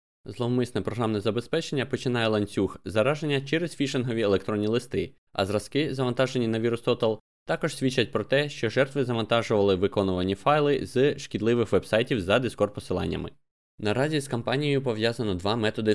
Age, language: 20-39, Ukrainian